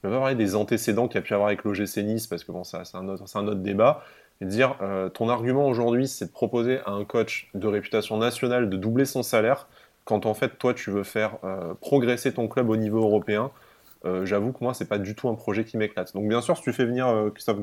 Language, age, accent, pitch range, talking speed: French, 20-39, French, 105-125 Hz, 270 wpm